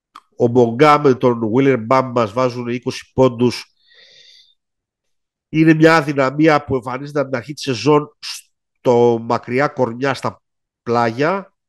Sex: male